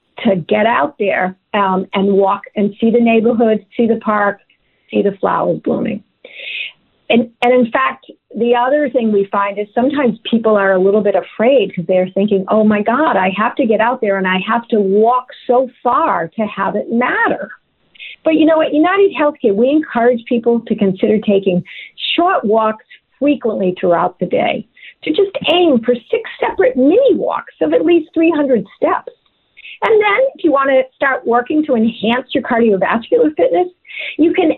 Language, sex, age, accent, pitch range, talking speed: English, female, 50-69, American, 215-305 Hz, 180 wpm